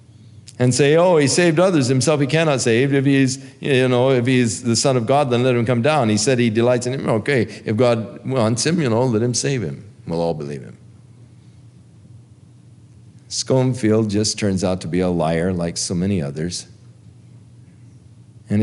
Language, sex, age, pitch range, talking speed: English, male, 50-69, 110-130 Hz, 190 wpm